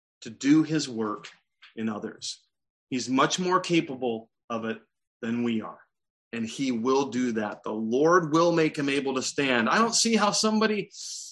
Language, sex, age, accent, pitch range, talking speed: English, male, 30-49, American, 125-170 Hz, 175 wpm